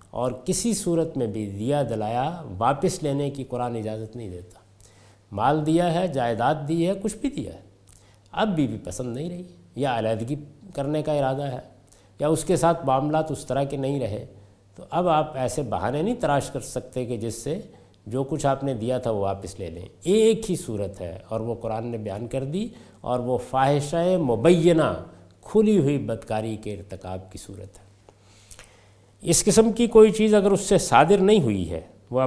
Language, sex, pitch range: Urdu, male, 105-160 Hz